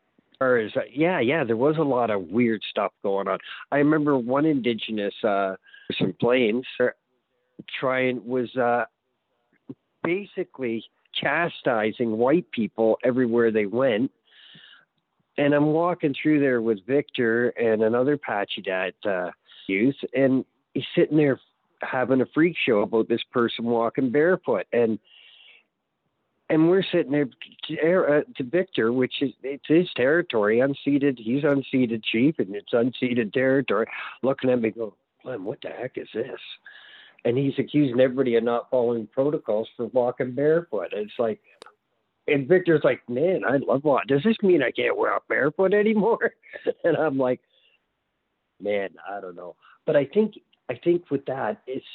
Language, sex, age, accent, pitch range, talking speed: English, male, 50-69, American, 115-145 Hz, 150 wpm